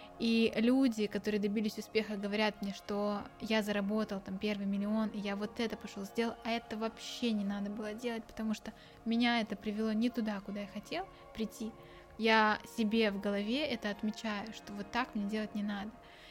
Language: Russian